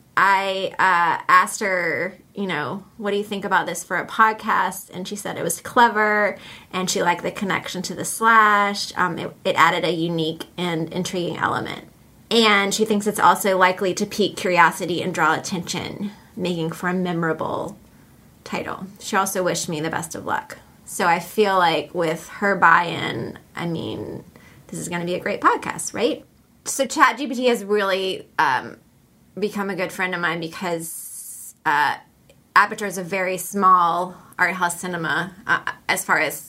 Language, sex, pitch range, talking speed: English, female, 175-210 Hz, 175 wpm